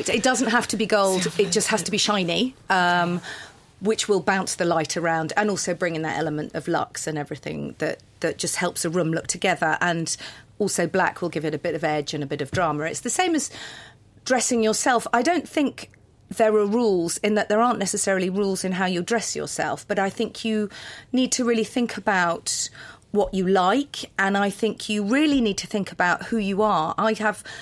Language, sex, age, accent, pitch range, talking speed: English, female, 40-59, British, 175-220 Hz, 220 wpm